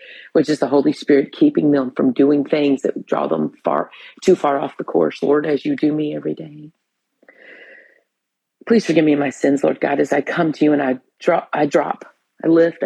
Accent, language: American, English